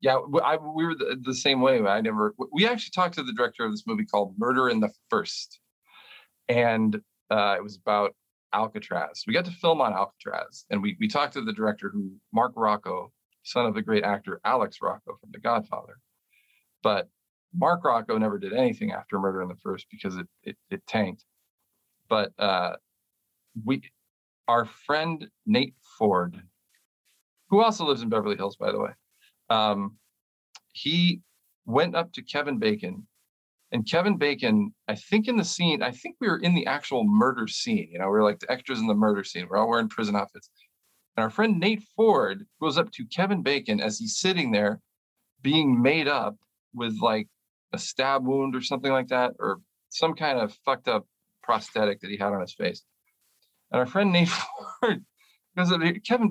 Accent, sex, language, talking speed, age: American, male, English, 185 wpm, 40-59